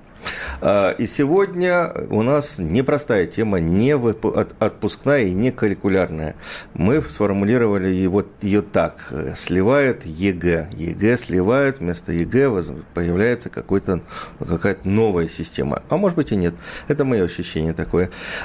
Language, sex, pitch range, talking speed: Russian, male, 90-130 Hz, 115 wpm